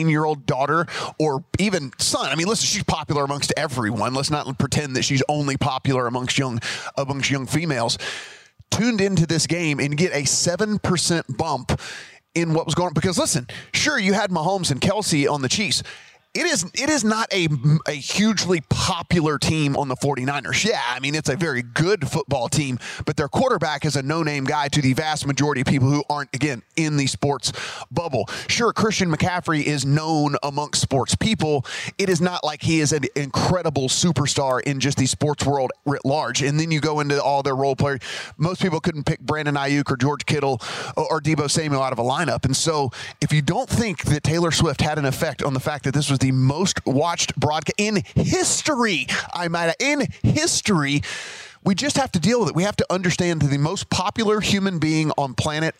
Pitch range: 140-170 Hz